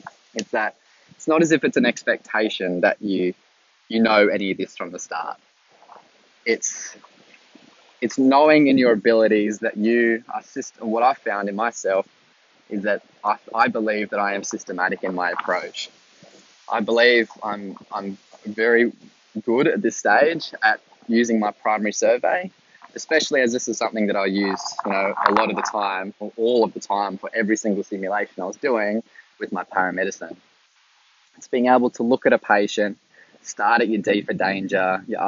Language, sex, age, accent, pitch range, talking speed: English, male, 20-39, Australian, 100-125 Hz, 175 wpm